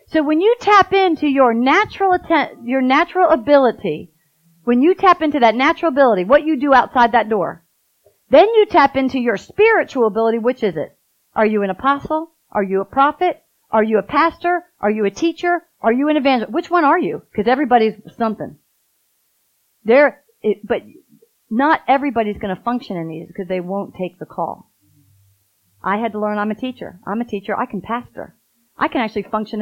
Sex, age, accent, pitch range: female, 40-59, American, 200-280 Hz